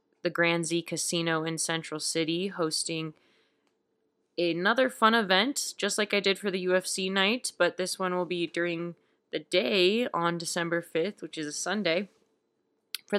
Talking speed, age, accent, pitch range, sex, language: 160 wpm, 20-39, American, 155-195 Hz, female, English